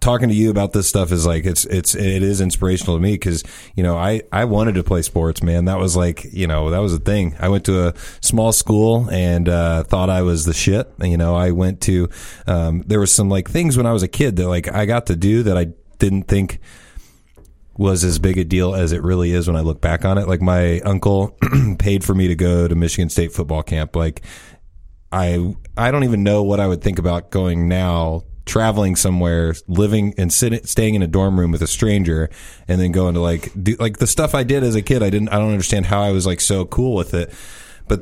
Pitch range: 85-105 Hz